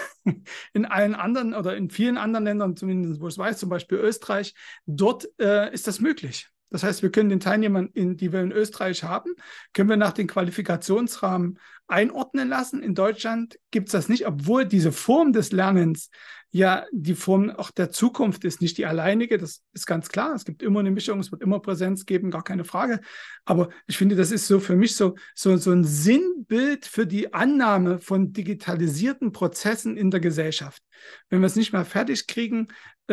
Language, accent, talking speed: German, German, 190 wpm